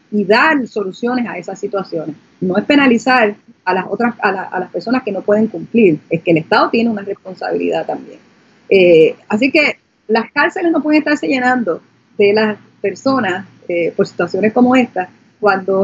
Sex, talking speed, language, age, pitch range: female, 180 wpm, Spanish, 30-49, 195-245 Hz